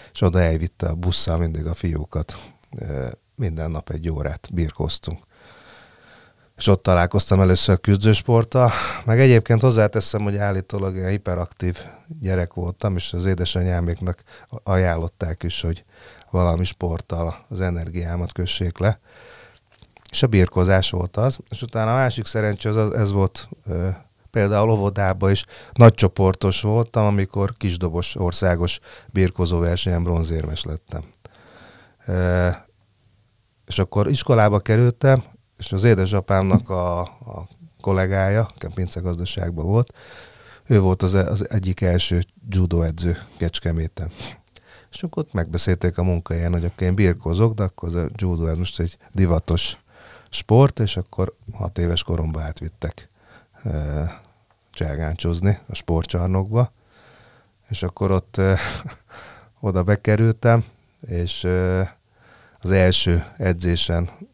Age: 40-59